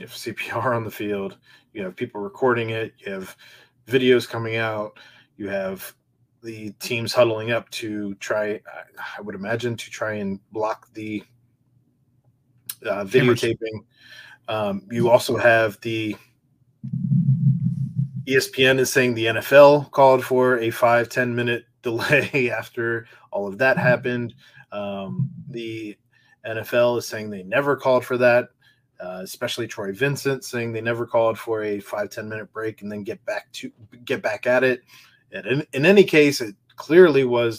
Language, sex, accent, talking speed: English, male, American, 155 wpm